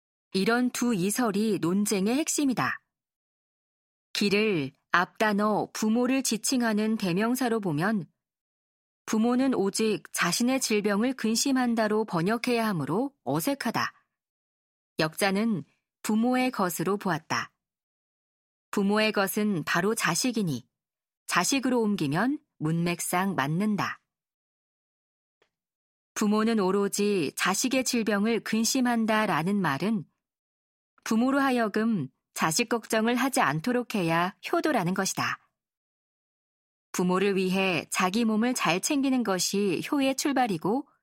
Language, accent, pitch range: Korean, native, 185-245 Hz